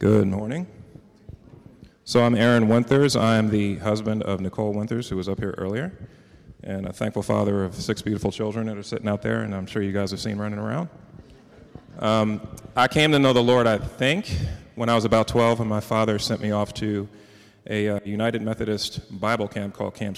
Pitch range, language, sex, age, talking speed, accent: 105-120 Hz, English, male, 30-49, 200 wpm, American